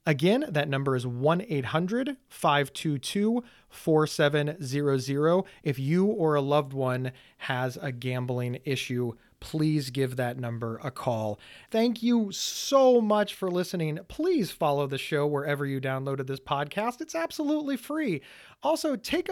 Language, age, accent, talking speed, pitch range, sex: English, 30-49, American, 125 wpm, 140-205 Hz, male